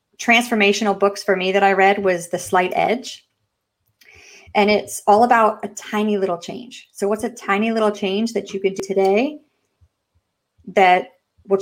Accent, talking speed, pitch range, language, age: American, 165 wpm, 180-205 Hz, English, 30-49